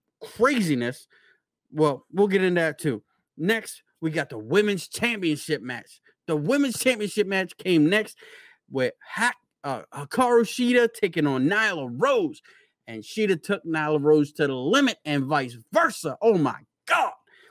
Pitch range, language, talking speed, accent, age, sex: 150-225 Hz, English, 145 wpm, American, 30-49, male